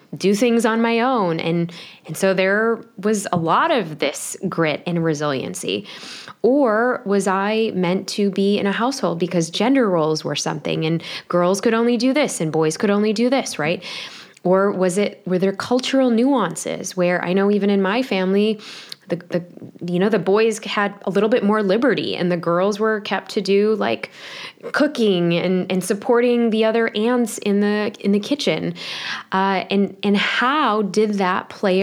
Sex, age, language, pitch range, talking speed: female, 10-29, English, 170-210 Hz, 185 wpm